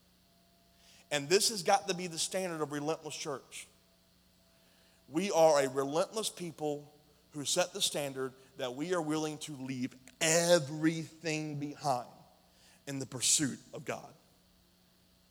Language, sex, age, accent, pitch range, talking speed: English, male, 30-49, American, 140-180 Hz, 130 wpm